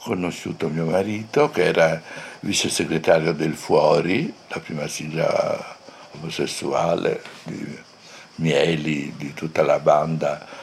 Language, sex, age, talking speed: Italian, male, 60-79, 105 wpm